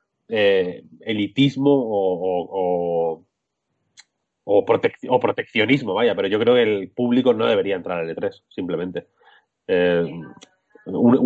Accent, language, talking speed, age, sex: Spanish, Spanish, 130 wpm, 30-49, male